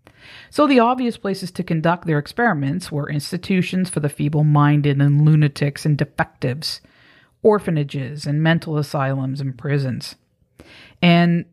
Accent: American